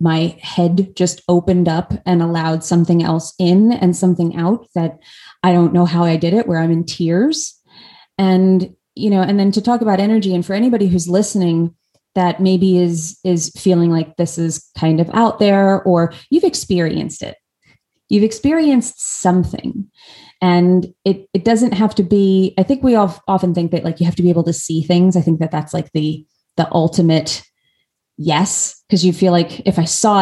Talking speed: 195 wpm